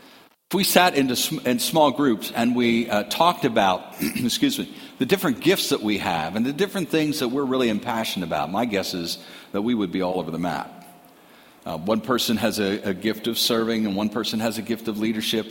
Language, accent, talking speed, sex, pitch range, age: English, American, 220 wpm, male, 100-125 Hz, 50-69